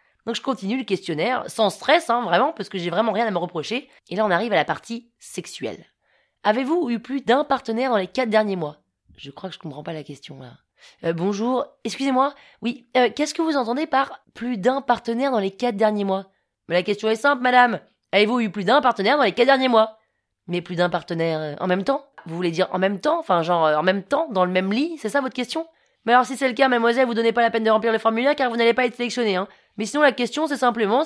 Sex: female